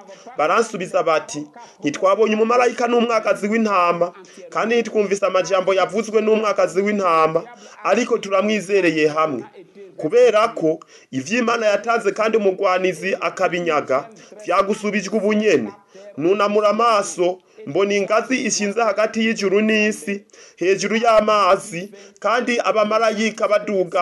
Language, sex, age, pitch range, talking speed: French, male, 30-49, 175-215 Hz, 100 wpm